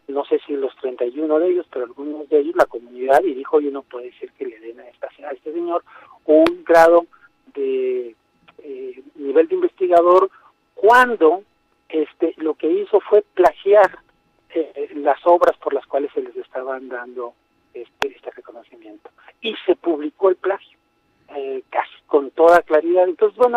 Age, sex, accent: 50-69, male, Mexican